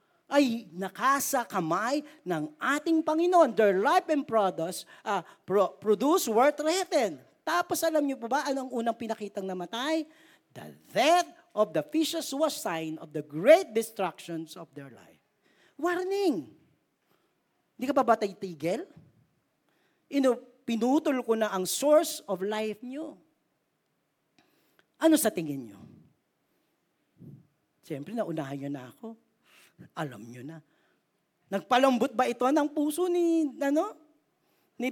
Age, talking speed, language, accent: 40-59, 120 wpm, Filipino, native